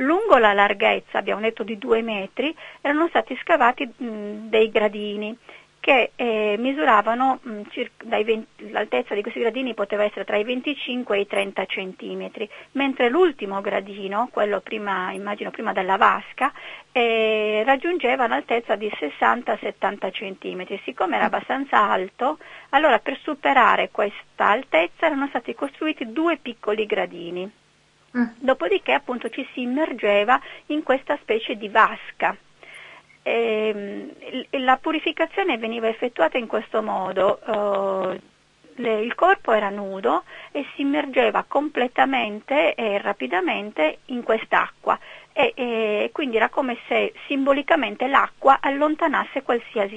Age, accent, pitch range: 40-59, native, 205-275 Hz